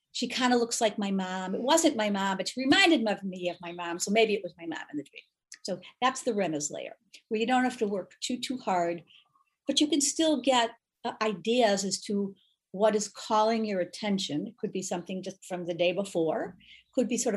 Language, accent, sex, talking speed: English, American, female, 230 wpm